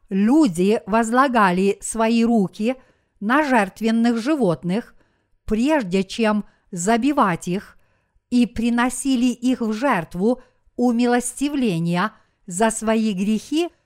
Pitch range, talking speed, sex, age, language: 195-250 Hz, 85 wpm, female, 50-69, Russian